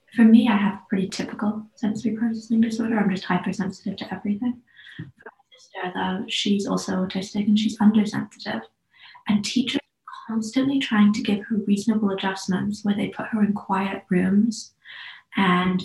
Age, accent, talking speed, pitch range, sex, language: 20-39, British, 165 wpm, 190-220 Hz, female, English